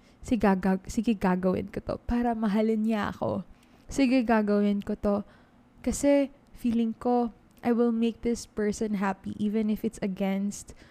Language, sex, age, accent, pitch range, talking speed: English, female, 20-39, Filipino, 210-245 Hz, 140 wpm